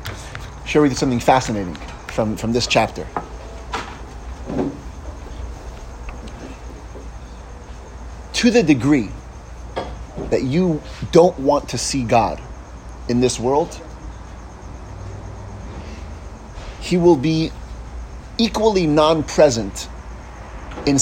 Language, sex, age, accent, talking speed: English, male, 30-49, American, 80 wpm